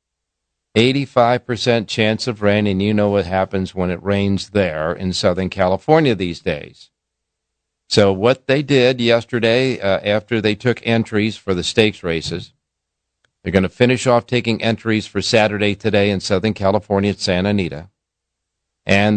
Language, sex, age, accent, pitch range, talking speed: English, male, 50-69, American, 90-115 Hz, 155 wpm